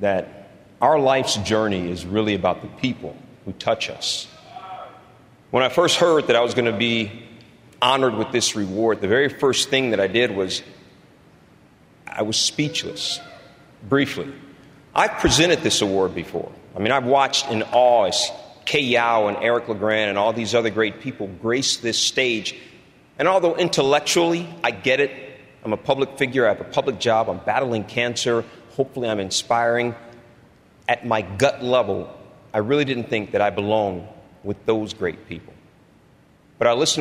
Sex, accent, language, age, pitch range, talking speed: male, American, English, 40-59, 105-130 Hz, 165 wpm